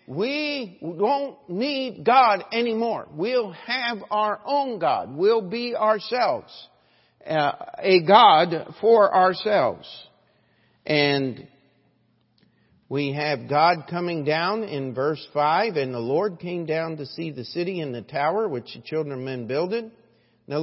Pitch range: 140-195 Hz